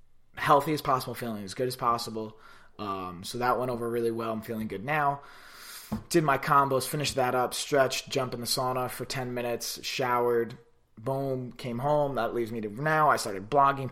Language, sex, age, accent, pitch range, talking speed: English, male, 20-39, American, 115-140 Hz, 195 wpm